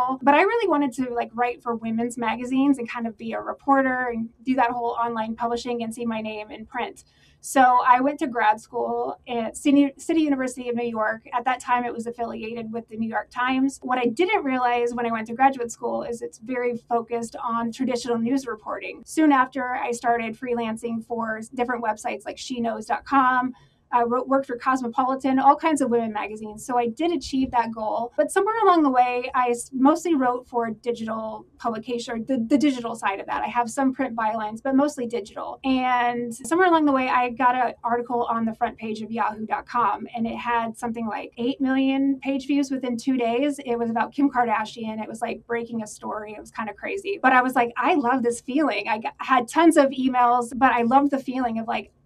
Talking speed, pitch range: 210 wpm, 230-265 Hz